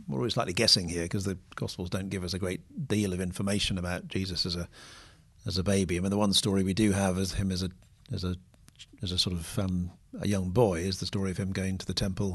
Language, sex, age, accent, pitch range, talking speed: English, male, 50-69, British, 100-125 Hz, 260 wpm